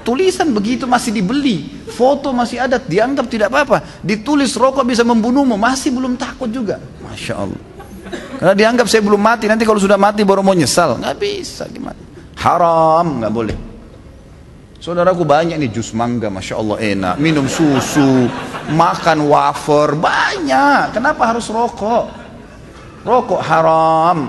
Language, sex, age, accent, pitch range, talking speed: Indonesian, male, 30-49, native, 145-220 Hz, 135 wpm